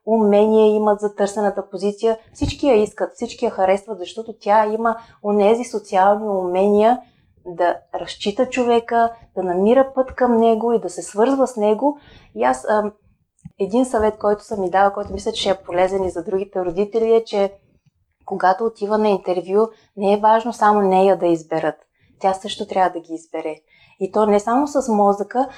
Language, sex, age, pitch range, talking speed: Bulgarian, female, 30-49, 190-230 Hz, 175 wpm